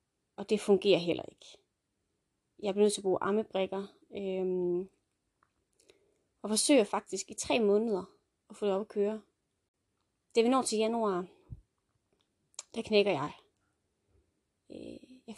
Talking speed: 130 wpm